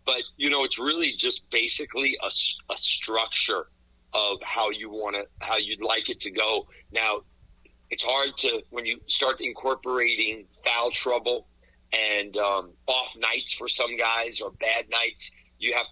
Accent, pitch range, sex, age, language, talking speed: American, 105-155 Hz, male, 40-59, English, 160 wpm